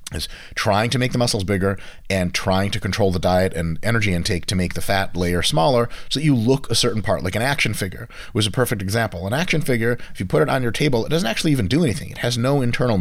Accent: American